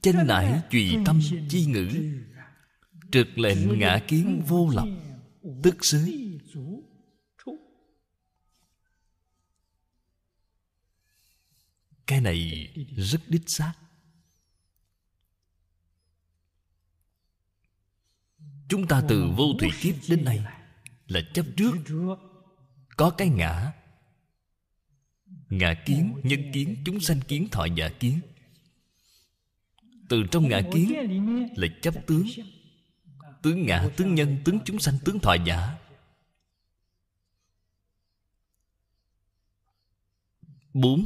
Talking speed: 90 wpm